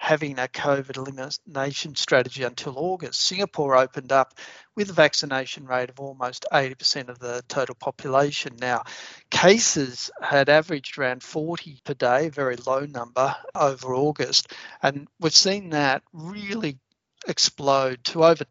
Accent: Australian